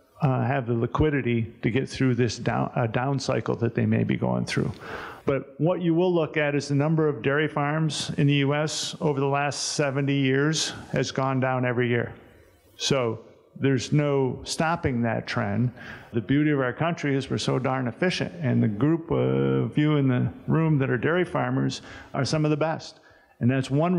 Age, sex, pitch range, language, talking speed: 50-69, male, 120-145 Hz, English, 200 wpm